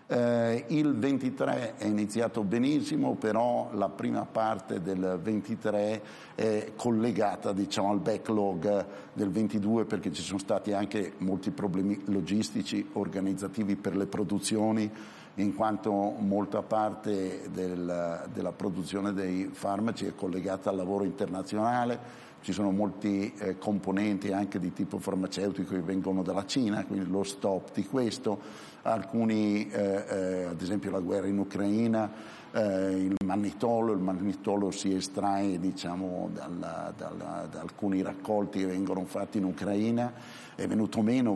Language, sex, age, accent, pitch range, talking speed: Italian, male, 50-69, native, 95-110 Hz, 130 wpm